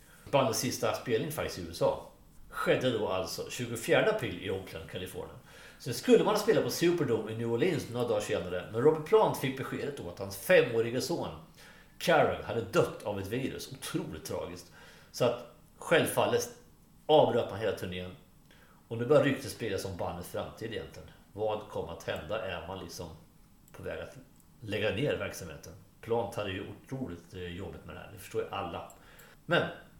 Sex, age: male, 40-59